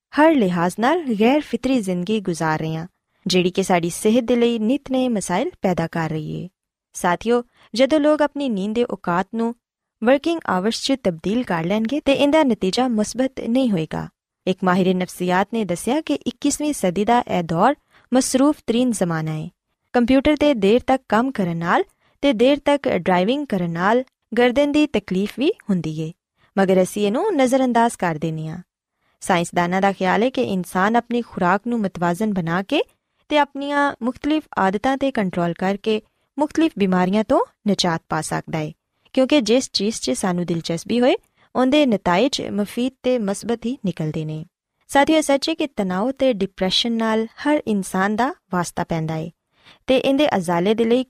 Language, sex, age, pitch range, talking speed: Punjabi, female, 20-39, 180-260 Hz, 155 wpm